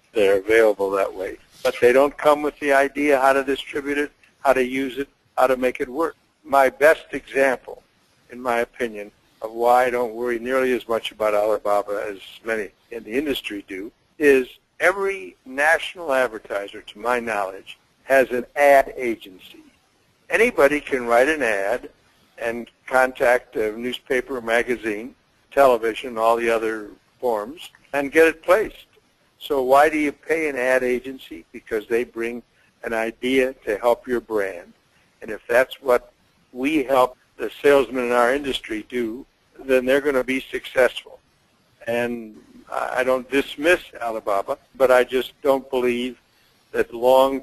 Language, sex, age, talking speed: English, male, 60-79, 155 wpm